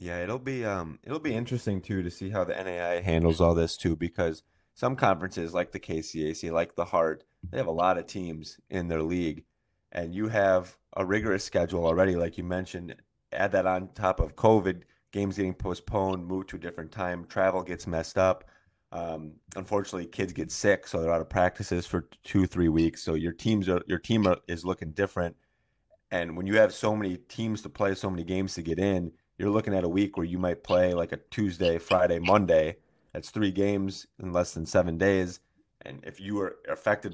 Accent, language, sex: American, English, male